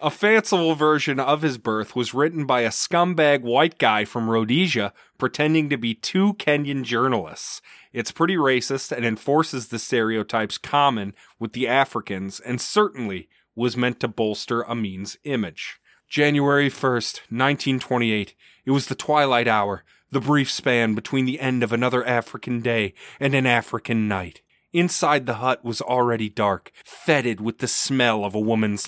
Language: English